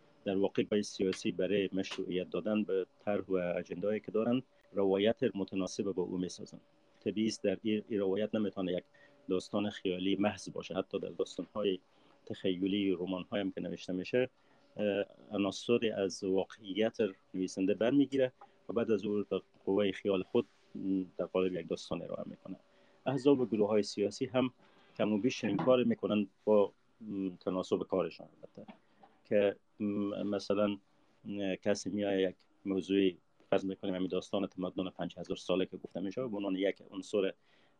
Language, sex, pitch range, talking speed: Persian, male, 95-105 Hz, 145 wpm